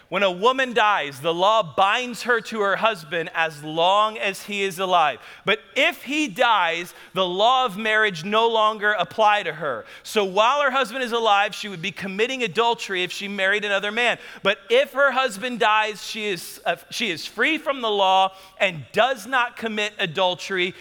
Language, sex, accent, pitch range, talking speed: English, male, American, 185-235 Hz, 185 wpm